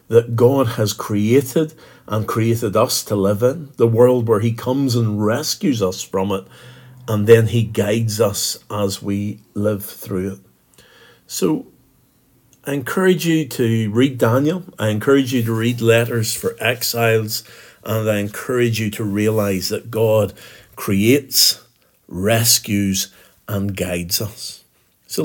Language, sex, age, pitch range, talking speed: English, male, 50-69, 105-125 Hz, 140 wpm